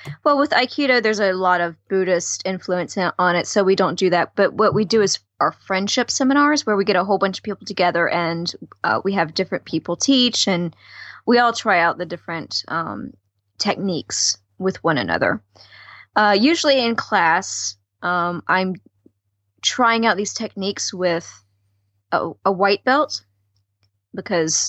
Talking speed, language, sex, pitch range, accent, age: 165 wpm, English, female, 170-225 Hz, American, 20-39